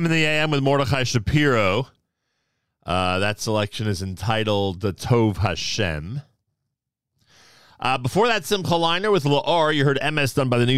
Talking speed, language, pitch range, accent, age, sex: 155 wpm, English, 90-120 Hz, American, 40-59, male